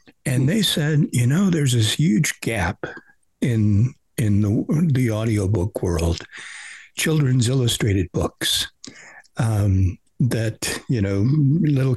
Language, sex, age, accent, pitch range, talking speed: English, male, 60-79, American, 110-145 Hz, 115 wpm